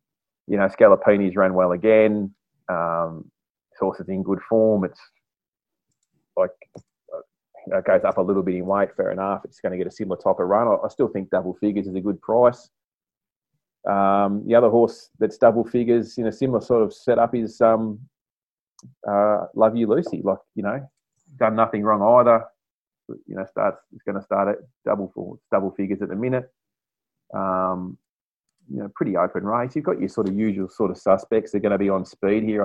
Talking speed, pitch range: 200 wpm, 95-110 Hz